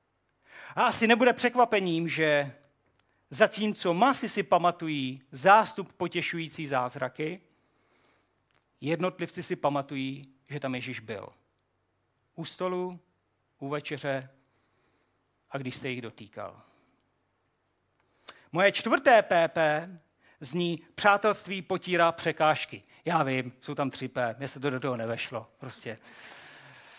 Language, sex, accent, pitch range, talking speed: Czech, male, native, 130-185 Hz, 105 wpm